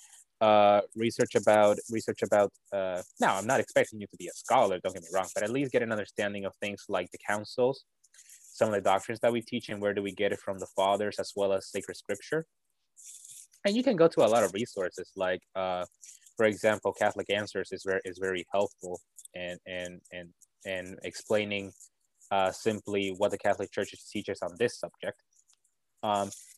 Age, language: 20-39, English